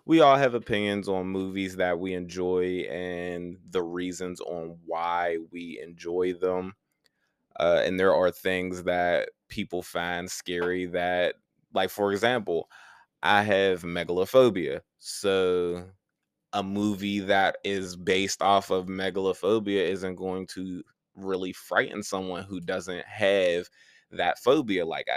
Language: English